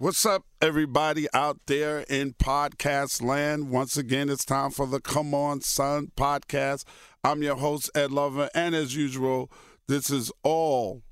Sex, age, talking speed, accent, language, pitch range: male, 50-69, 155 wpm, American, English, 105-140 Hz